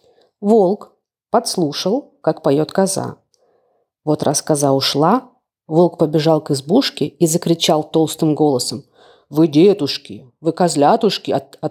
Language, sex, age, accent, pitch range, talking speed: Ukrainian, female, 30-49, native, 155-220 Hz, 115 wpm